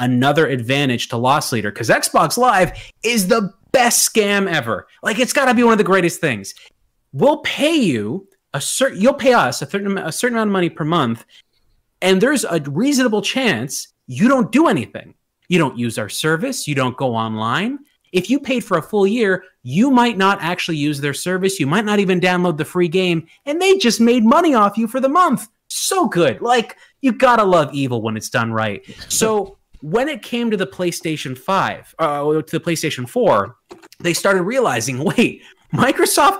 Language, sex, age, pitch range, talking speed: English, male, 30-49, 150-245 Hz, 195 wpm